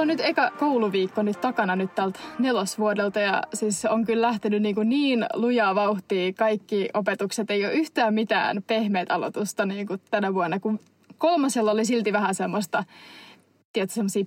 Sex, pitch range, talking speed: female, 200-240 Hz, 165 wpm